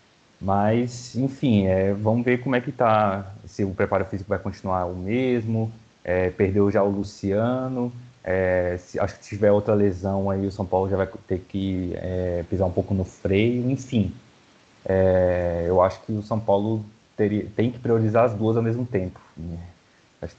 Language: Portuguese